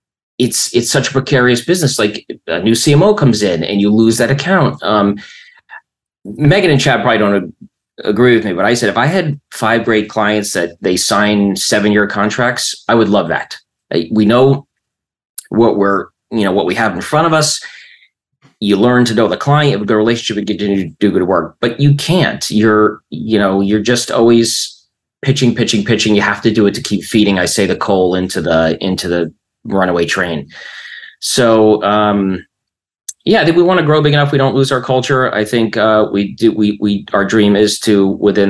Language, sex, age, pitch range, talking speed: English, male, 30-49, 100-130 Hz, 200 wpm